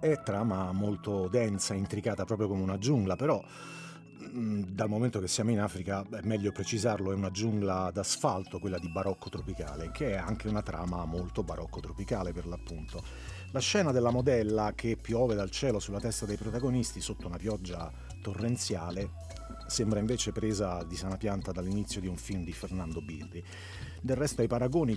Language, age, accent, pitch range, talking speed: Italian, 40-59, native, 95-115 Hz, 170 wpm